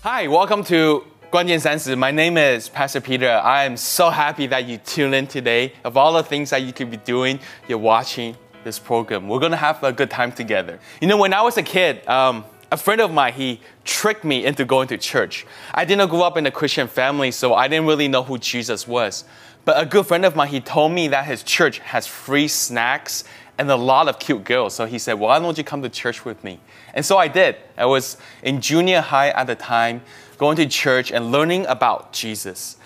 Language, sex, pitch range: Chinese, male, 125-170 Hz